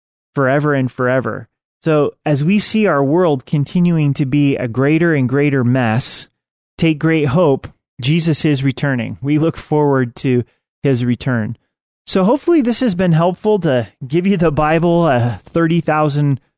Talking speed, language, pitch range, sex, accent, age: 150 wpm, English, 130-165 Hz, male, American, 30-49